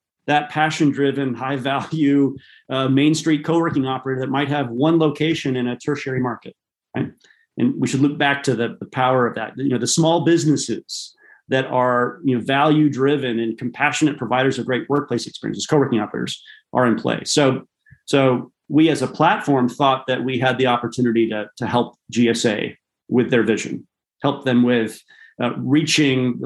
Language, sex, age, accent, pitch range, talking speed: English, male, 40-59, American, 120-145 Hz, 175 wpm